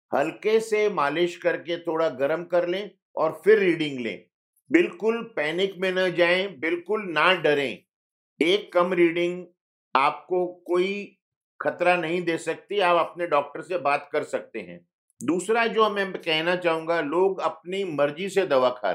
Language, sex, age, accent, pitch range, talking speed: Hindi, male, 50-69, native, 160-190 Hz, 150 wpm